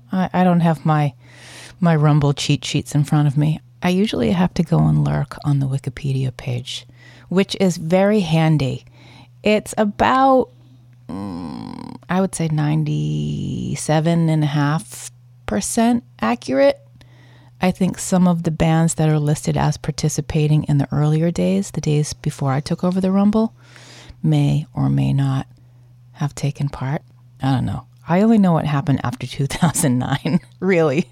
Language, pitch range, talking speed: English, 130-170 Hz, 145 wpm